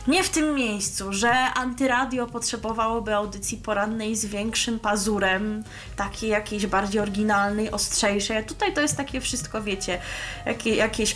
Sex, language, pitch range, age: female, Polish, 200-245 Hz, 20-39